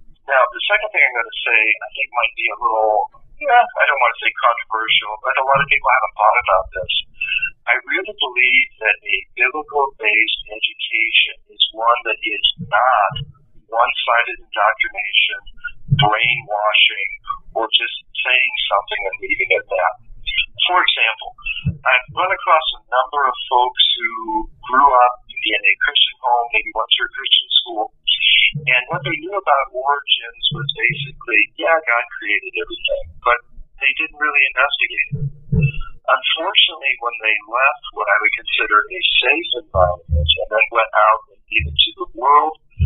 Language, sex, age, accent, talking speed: English, male, 50-69, American, 160 wpm